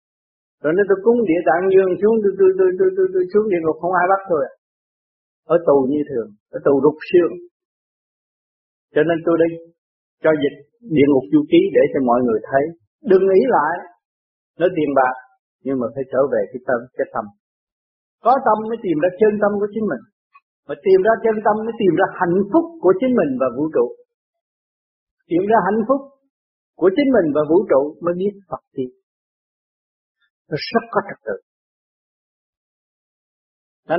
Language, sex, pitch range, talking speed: Vietnamese, male, 145-225 Hz, 180 wpm